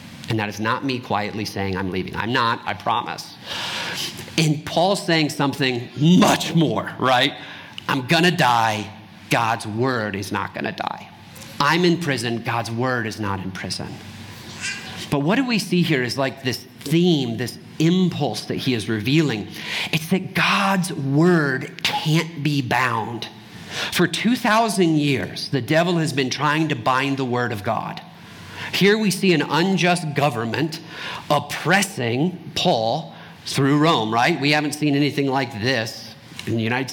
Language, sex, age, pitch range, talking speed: English, male, 40-59, 120-165 Hz, 160 wpm